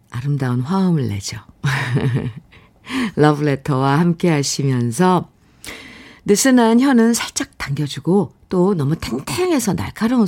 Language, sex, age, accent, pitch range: Korean, female, 50-69, native, 155-225 Hz